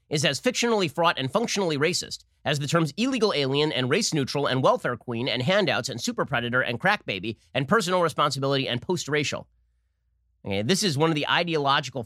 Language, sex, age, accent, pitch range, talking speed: English, male, 30-49, American, 120-175 Hz, 190 wpm